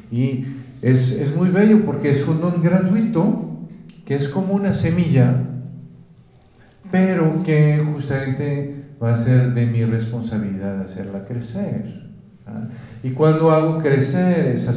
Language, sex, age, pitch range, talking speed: Spanish, male, 50-69, 115-145 Hz, 135 wpm